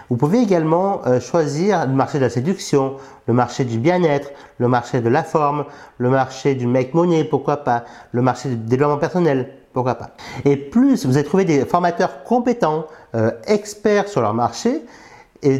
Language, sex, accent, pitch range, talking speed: French, male, French, 120-165 Hz, 180 wpm